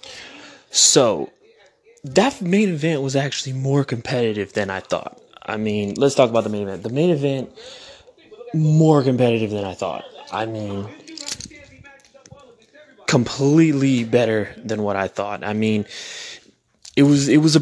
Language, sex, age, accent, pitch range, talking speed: English, male, 20-39, American, 110-145 Hz, 145 wpm